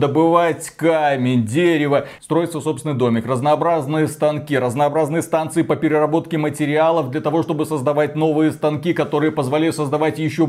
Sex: male